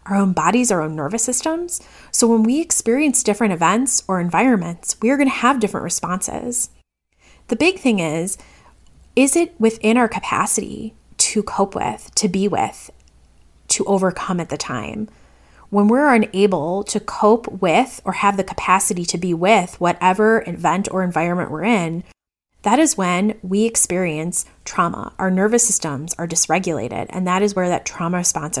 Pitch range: 170-235 Hz